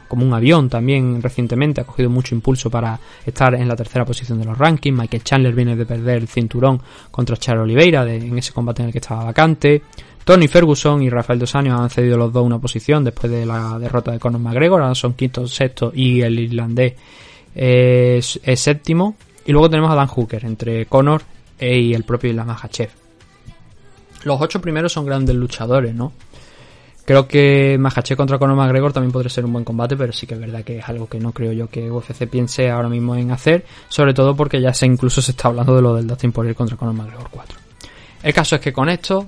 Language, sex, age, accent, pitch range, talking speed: Spanish, male, 20-39, Spanish, 120-135 Hz, 215 wpm